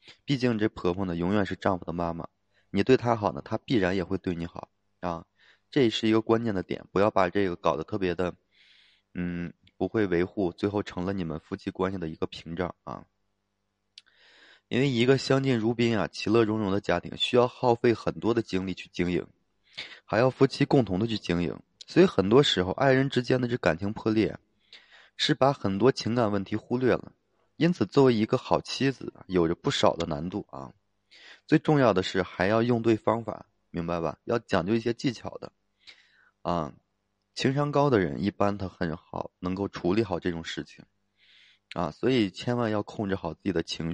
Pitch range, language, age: 90-115 Hz, Chinese, 20-39